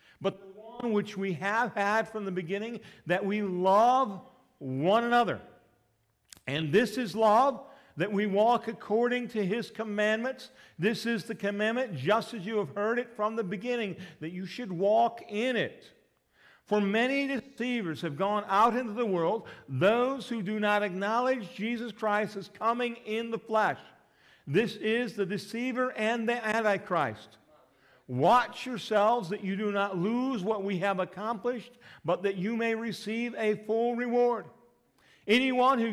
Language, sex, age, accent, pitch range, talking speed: English, male, 50-69, American, 195-235 Hz, 150 wpm